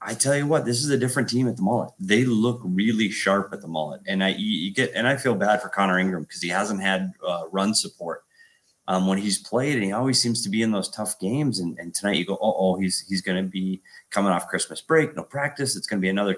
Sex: male